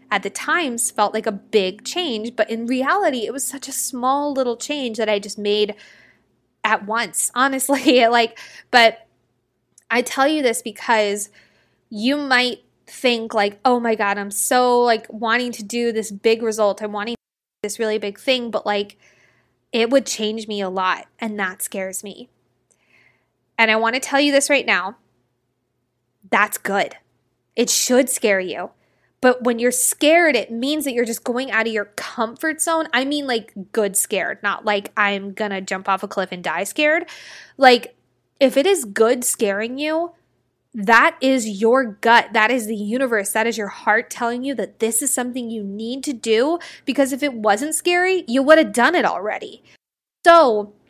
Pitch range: 210-265 Hz